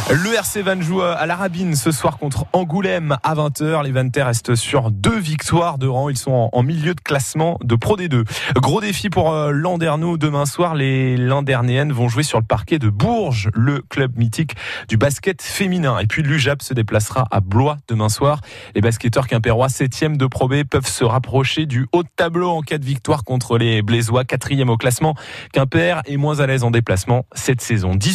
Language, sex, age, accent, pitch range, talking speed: French, male, 20-39, French, 125-170 Hz, 195 wpm